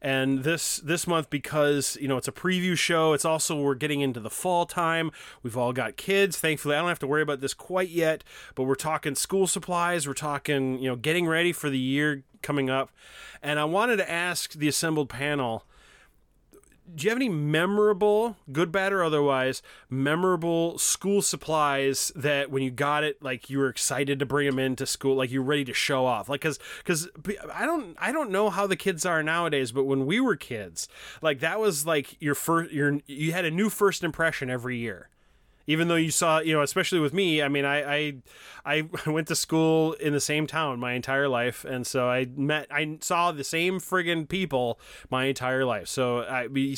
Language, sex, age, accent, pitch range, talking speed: English, male, 30-49, American, 135-170 Hz, 210 wpm